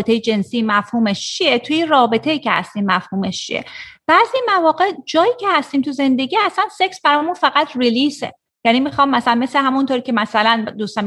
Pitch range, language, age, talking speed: 215-285 Hz, Persian, 30-49, 150 wpm